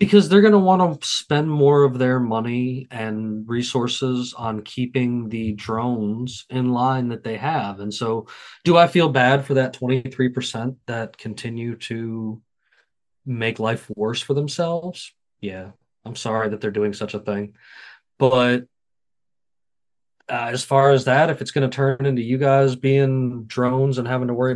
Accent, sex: American, male